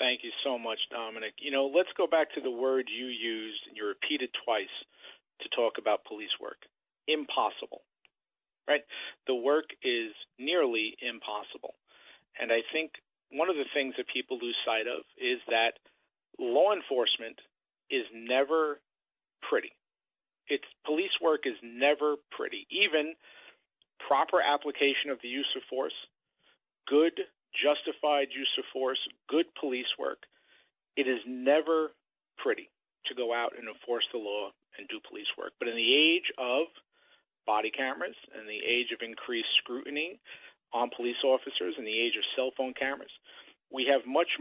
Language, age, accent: English, 50-69, American